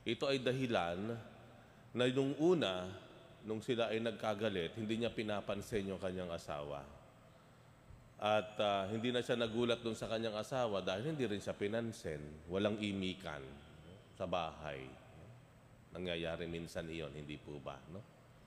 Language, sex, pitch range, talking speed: Filipino, male, 95-135 Hz, 135 wpm